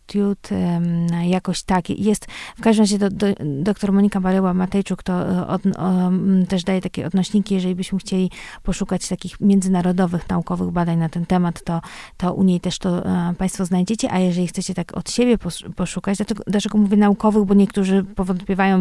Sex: female